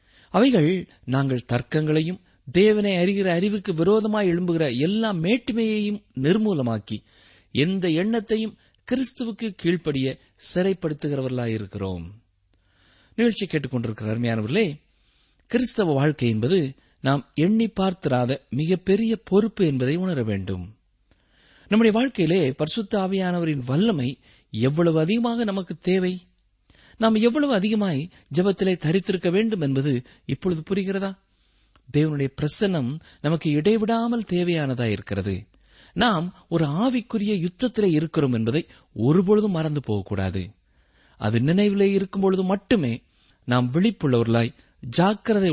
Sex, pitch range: male, 120-195 Hz